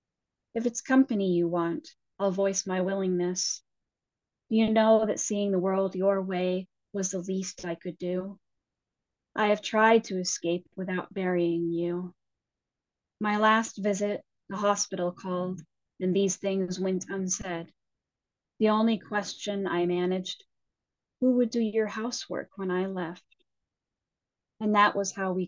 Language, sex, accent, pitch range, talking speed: English, female, American, 180-210 Hz, 140 wpm